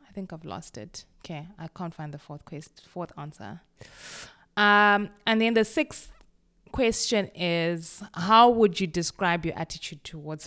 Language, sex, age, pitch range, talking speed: English, female, 20-39, 155-205 Hz, 160 wpm